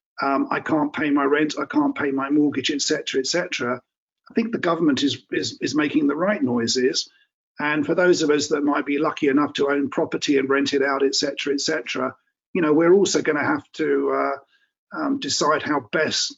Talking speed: 215 wpm